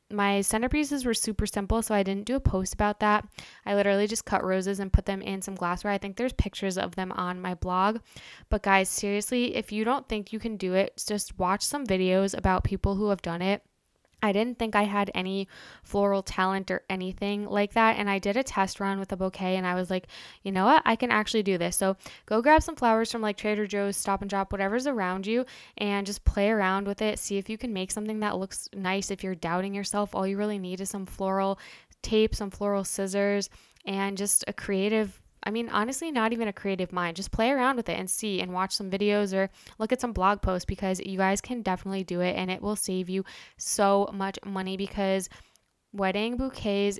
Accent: American